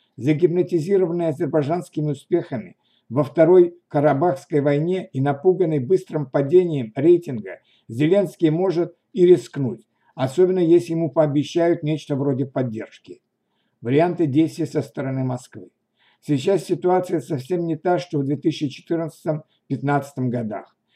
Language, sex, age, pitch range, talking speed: Russian, male, 60-79, 145-175 Hz, 105 wpm